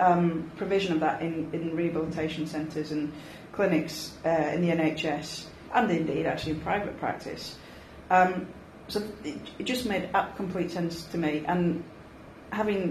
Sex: female